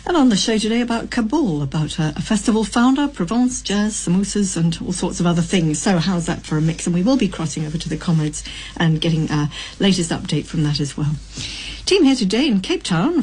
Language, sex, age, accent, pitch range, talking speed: English, female, 60-79, British, 165-220 Hz, 230 wpm